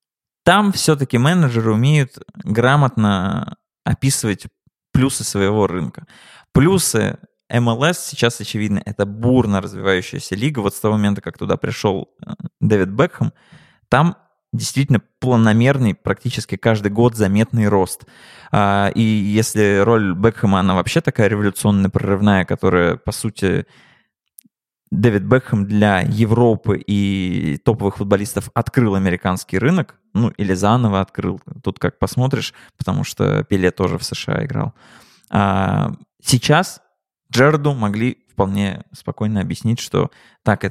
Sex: male